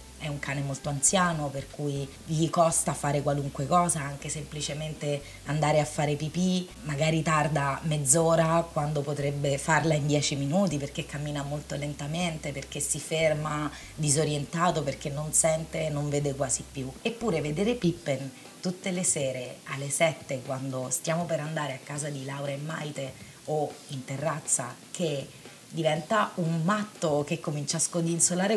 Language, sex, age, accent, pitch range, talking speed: Italian, female, 30-49, native, 145-165 Hz, 150 wpm